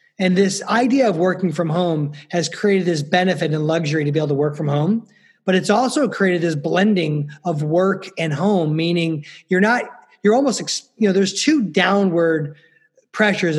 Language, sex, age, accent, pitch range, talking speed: English, male, 30-49, American, 165-205 Hz, 180 wpm